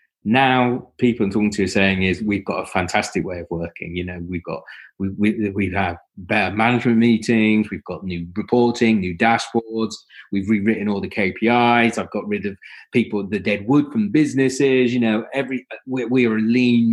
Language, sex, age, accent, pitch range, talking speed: English, male, 30-49, British, 100-120 Hz, 195 wpm